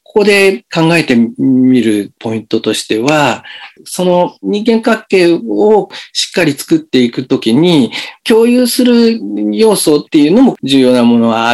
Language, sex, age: Japanese, male, 50-69